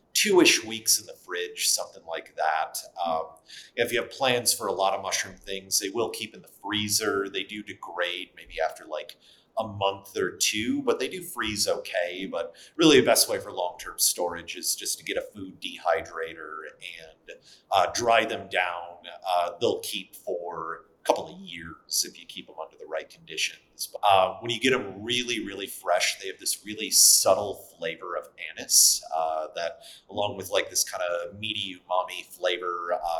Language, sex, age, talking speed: English, male, 30-49, 185 wpm